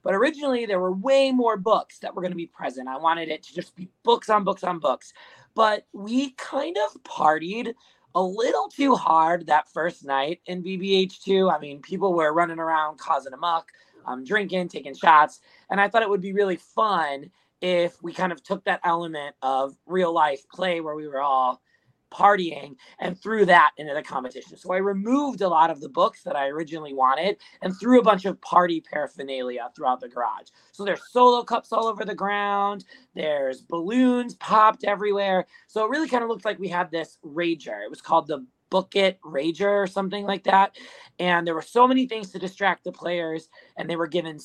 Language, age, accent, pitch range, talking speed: English, 30-49, American, 160-205 Hz, 200 wpm